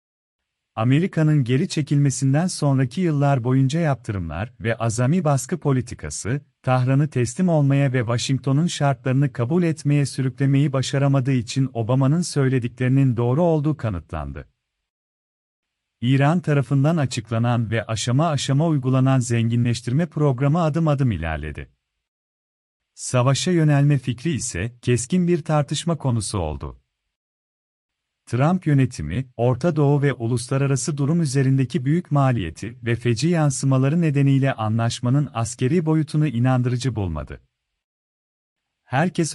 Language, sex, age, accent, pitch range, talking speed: Turkish, male, 40-59, native, 120-145 Hz, 105 wpm